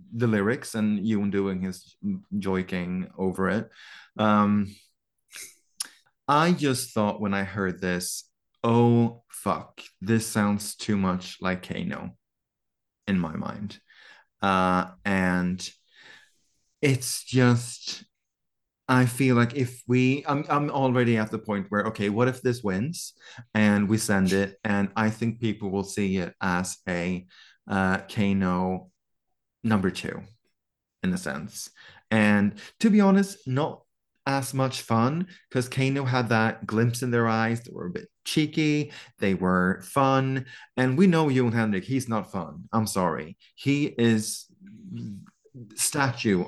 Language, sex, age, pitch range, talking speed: English, male, 30-49, 100-135 Hz, 135 wpm